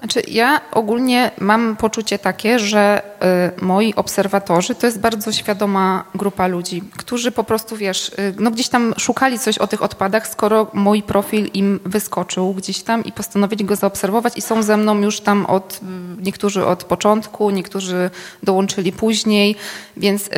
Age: 20-39